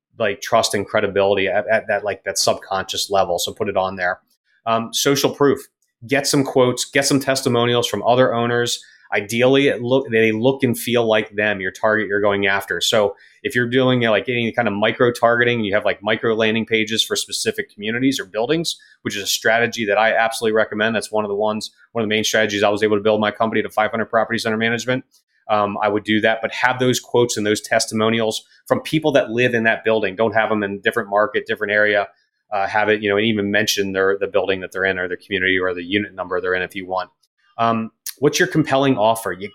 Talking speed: 235 wpm